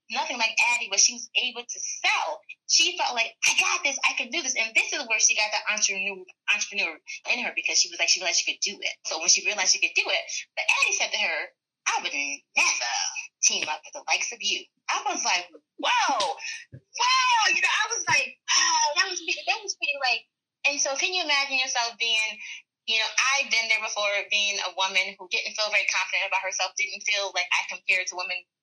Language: English